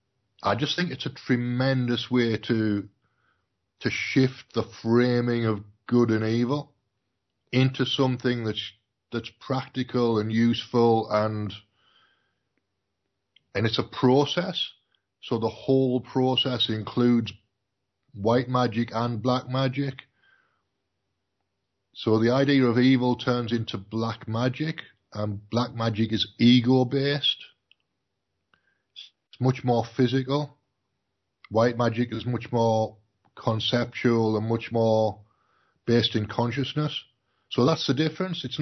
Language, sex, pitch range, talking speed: English, male, 110-130 Hz, 110 wpm